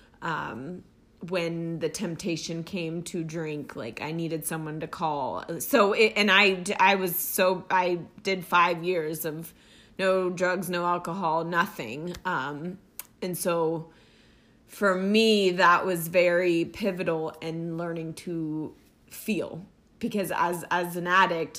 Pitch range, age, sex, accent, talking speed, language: 165-195 Hz, 20-39, female, American, 135 wpm, English